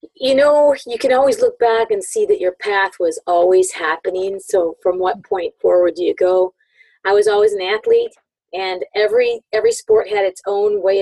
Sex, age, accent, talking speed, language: female, 40-59, American, 195 wpm, English